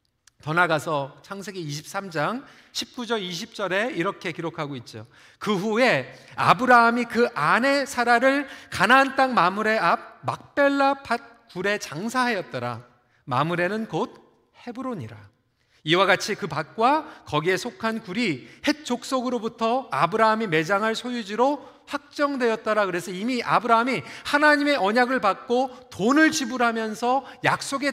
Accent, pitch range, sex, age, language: native, 170-255 Hz, male, 40-59, Korean